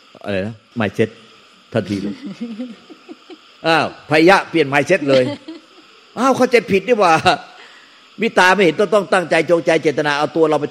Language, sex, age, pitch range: Thai, male, 60-79, 110-155 Hz